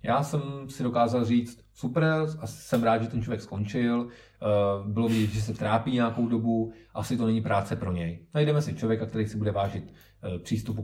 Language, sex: Czech, male